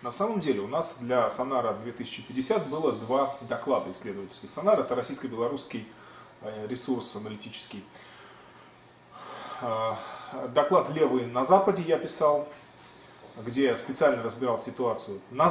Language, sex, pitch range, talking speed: Russian, male, 125-165 Hz, 110 wpm